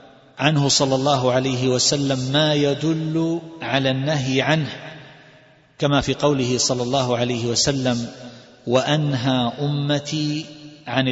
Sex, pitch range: male, 125-145 Hz